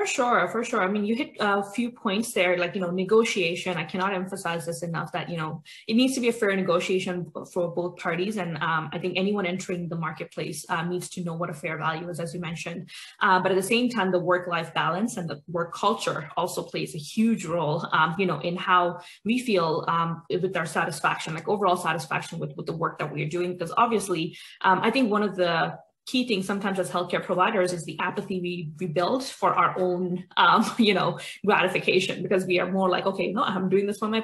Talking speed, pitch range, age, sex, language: 230 wpm, 175-205 Hz, 20-39, female, English